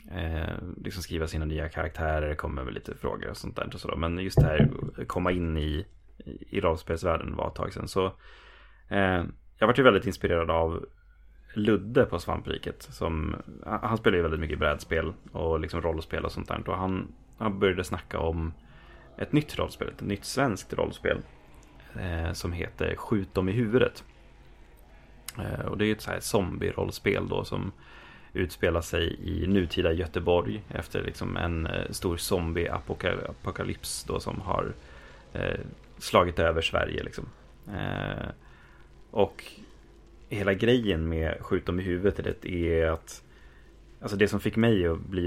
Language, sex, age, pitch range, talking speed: Swedish, male, 30-49, 80-95 Hz, 155 wpm